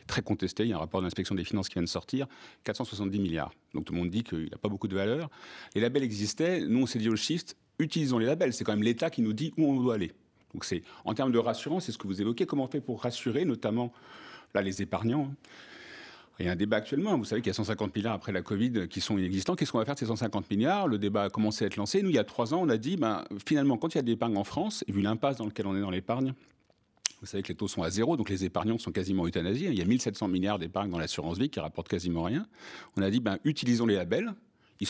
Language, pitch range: French, 100-130 Hz